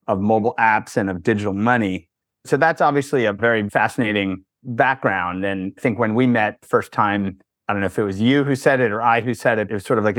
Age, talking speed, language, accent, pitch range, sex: 30-49, 245 wpm, English, American, 100-125 Hz, male